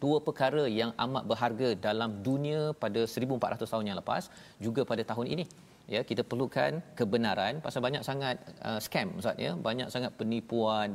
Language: Malayalam